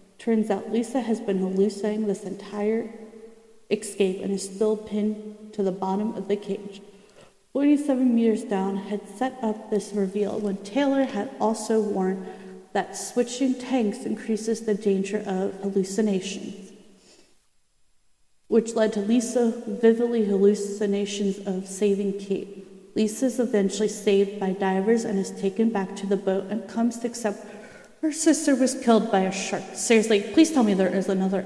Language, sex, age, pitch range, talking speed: English, female, 30-49, 195-225 Hz, 155 wpm